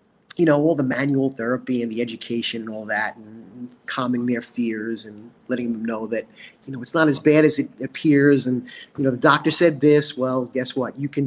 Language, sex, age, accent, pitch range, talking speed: English, male, 30-49, American, 130-155 Hz, 225 wpm